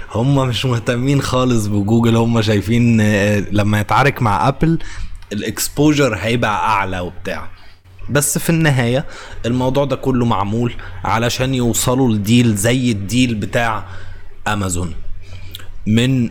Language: Arabic